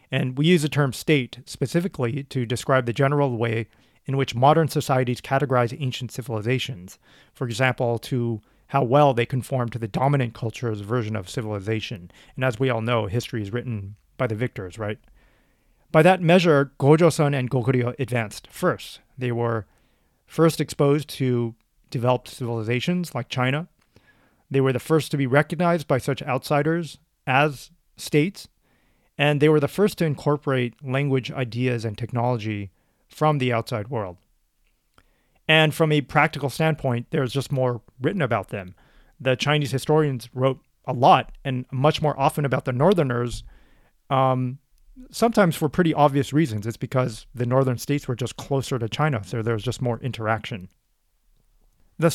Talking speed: 155 wpm